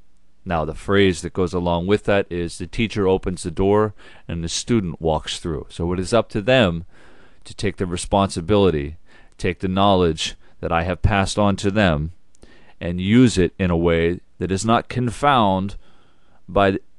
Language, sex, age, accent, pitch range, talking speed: English, male, 40-59, American, 85-110 Hz, 175 wpm